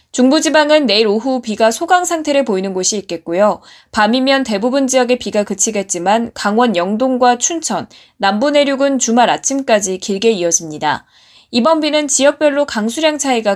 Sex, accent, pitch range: female, native, 195-275 Hz